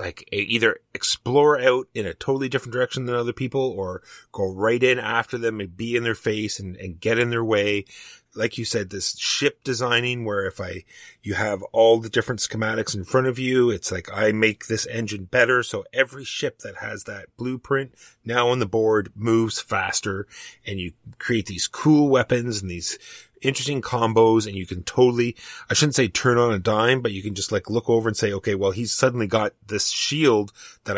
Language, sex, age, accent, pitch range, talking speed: English, male, 30-49, American, 100-125 Hz, 205 wpm